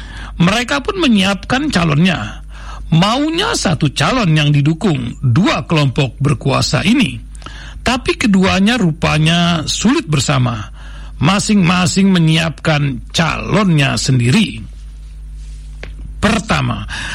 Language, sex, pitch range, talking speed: Indonesian, male, 140-205 Hz, 80 wpm